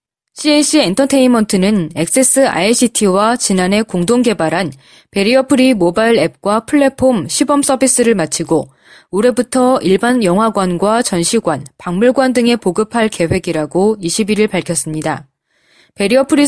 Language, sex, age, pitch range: Korean, female, 20-39, 180-255 Hz